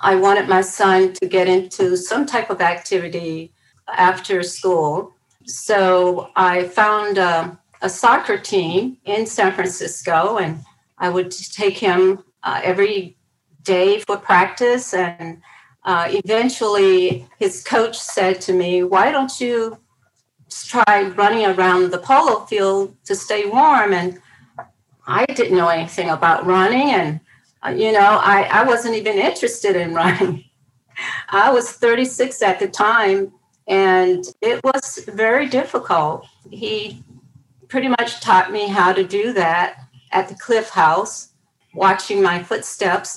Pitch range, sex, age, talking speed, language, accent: 175-215 Hz, female, 50-69, 135 wpm, English, American